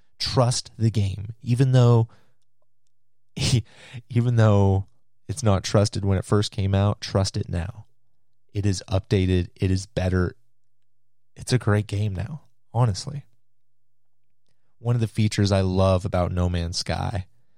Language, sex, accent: English, male, American